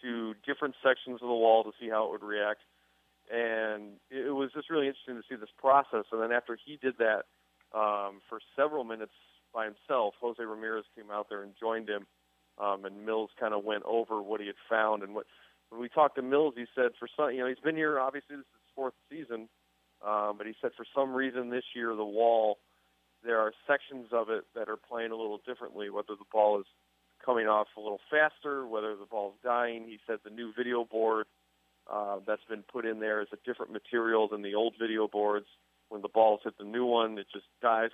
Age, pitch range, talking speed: 40-59, 105-125 Hz, 220 wpm